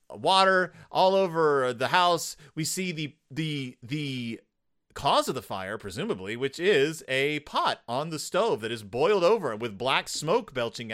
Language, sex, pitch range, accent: English, male, 125-185 Hz, American